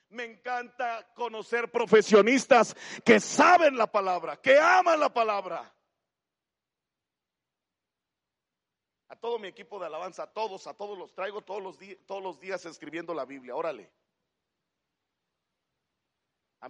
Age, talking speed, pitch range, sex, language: 50-69, 120 wpm, 180-250 Hz, male, Spanish